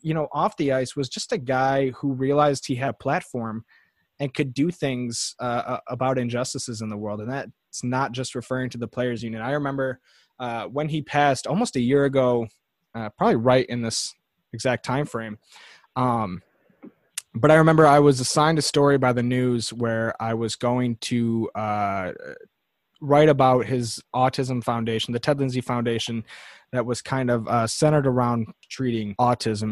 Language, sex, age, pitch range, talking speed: English, male, 20-39, 115-140 Hz, 175 wpm